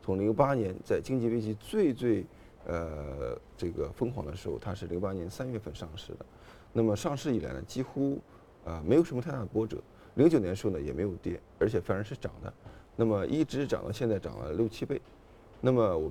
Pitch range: 95-135 Hz